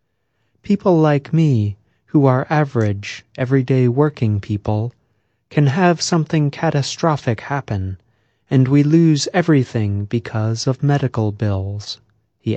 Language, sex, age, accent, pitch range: Chinese, male, 30-49, American, 110-150 Hz